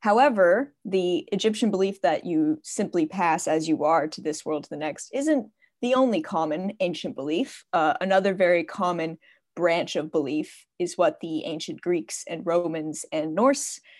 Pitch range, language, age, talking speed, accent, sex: 170-245 Hz, English, 20-39, 165 wpm, American, female